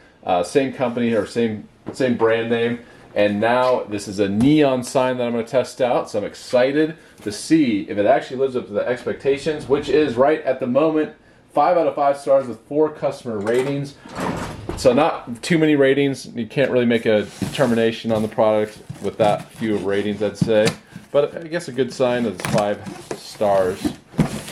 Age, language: 30-49, English